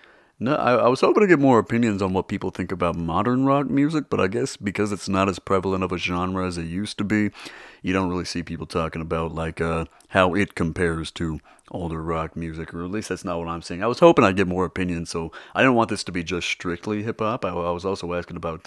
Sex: male